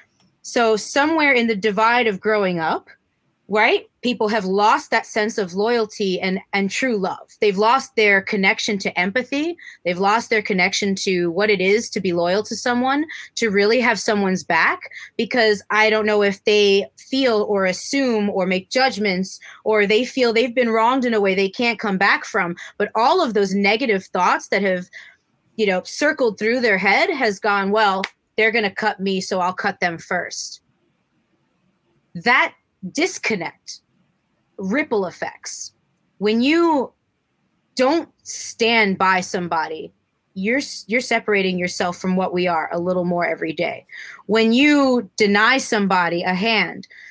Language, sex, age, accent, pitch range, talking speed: English, female, 20-39, American, 190-230 Hz, 160 wpm